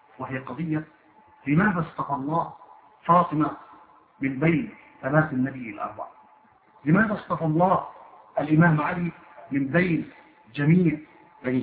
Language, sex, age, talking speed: Arabic, male, 50-69, 105 wpm